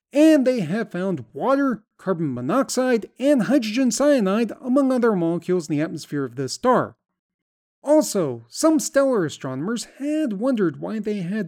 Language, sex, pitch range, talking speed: English, male, 160-240 Hz, 145 wpm